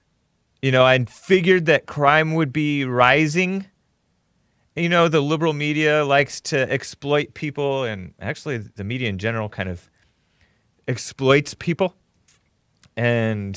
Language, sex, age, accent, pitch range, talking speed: English, male, 30-49, American, 110-165 Hz, 130 wpm